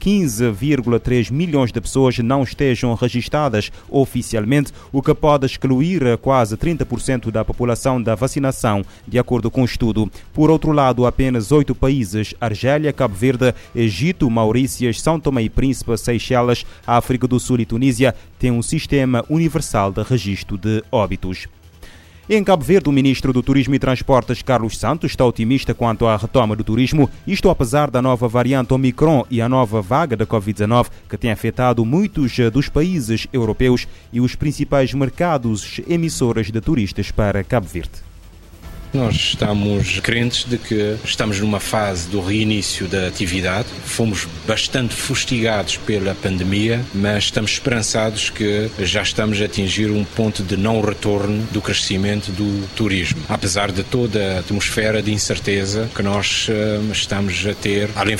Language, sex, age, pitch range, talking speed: Portuguese, male, 30-49, 100-130 Hz, 150 wpm